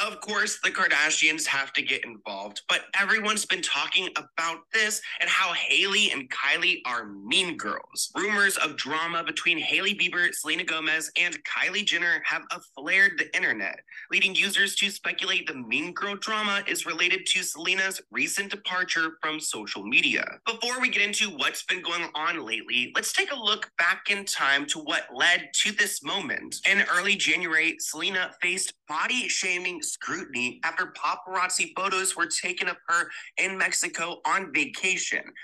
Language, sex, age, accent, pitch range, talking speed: English, male, 20-39, American, 165-205 Hz, 160 wpm